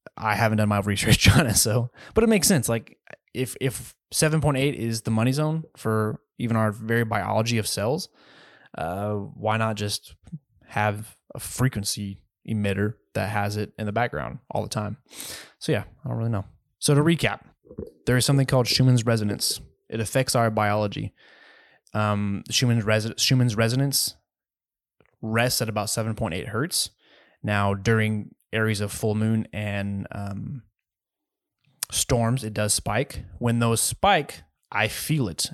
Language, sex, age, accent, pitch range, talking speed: English, male, 20-39, American, 105-120 Hz, 155 wpm